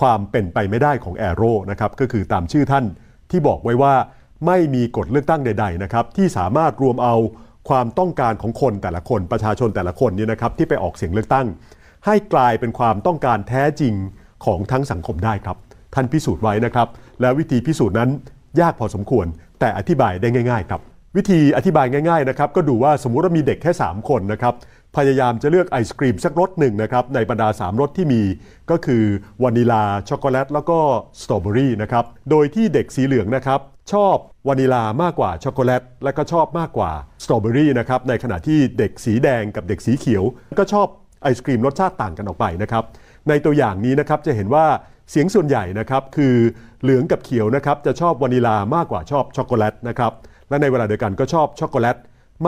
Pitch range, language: 110-145 Hz, Thai